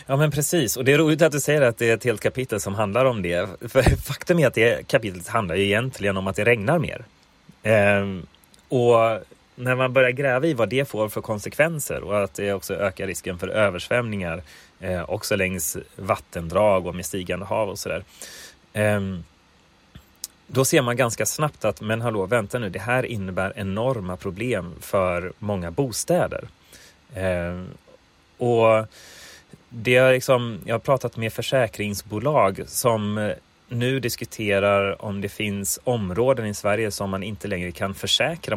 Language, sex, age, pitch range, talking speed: Swedish, male, 30-49, 95-120 Hz, 170 wpm